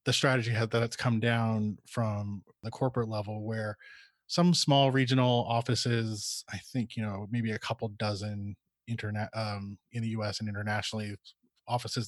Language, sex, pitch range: English, male, 110-120 Hz